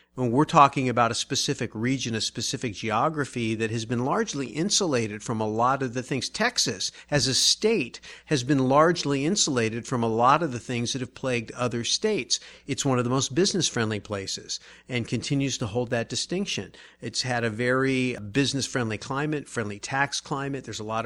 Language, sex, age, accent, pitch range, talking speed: English, male, 50-69, American, 115-140 Hz, 185 wpm